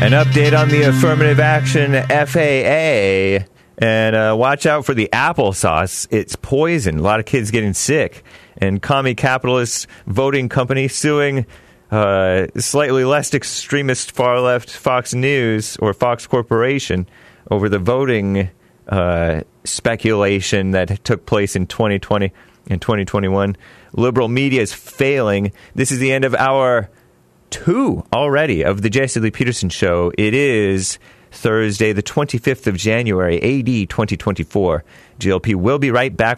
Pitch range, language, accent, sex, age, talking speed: 100-135 Hz, English, American, male, 30-49, 135 wpm